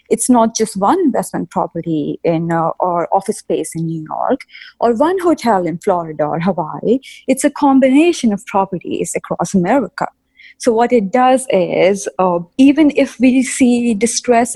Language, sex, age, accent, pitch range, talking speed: English, female, 30-49, Indian, 185-260 Hz, 160 wpm